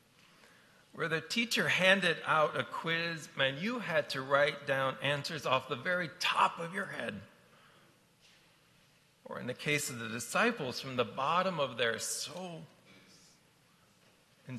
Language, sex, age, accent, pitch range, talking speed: English, male, 40-59, American, 140-185 Hz, 145 wpm